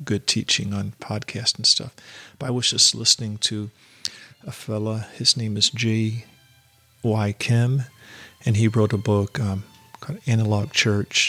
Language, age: English, 40-59